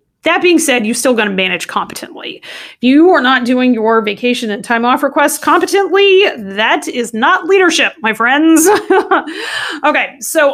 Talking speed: 160 wpm